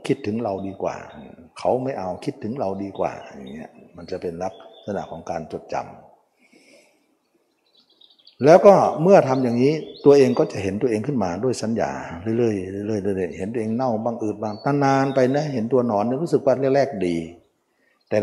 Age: 60-79